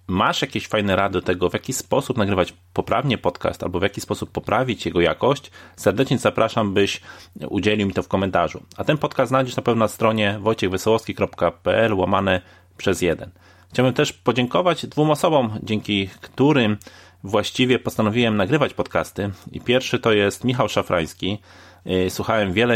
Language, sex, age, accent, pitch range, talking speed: Polish, male, 30-49, native, 95-115 Hz, 150 wpm